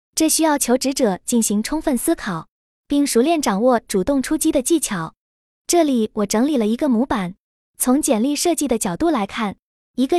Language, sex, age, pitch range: Chinese, female, 20-39, 220-300 Hz